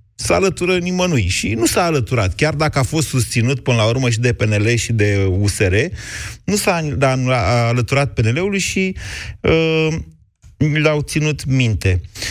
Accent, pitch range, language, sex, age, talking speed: native, 110-140 Hz, Romanian, male, 30-49, 145 wpm